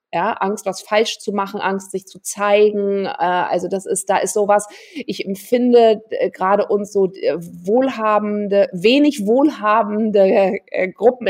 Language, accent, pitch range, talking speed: English, German, 185-225 Hz, 135 wpm